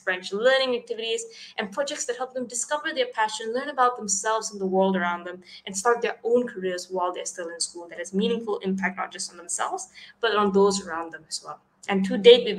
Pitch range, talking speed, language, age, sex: 190-235 Hz, 230 wpm, English, 20-39, female